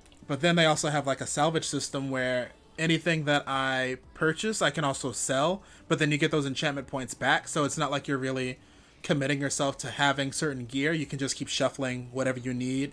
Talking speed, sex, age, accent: 215 wpm, male, 20-39, American